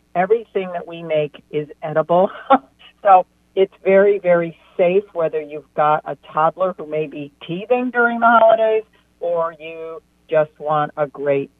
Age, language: 50-69, English